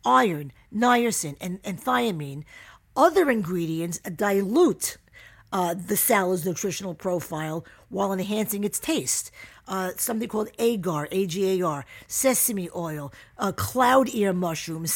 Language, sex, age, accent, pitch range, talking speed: English, female, 50-69, American, 175-230 Hz, 110 wpm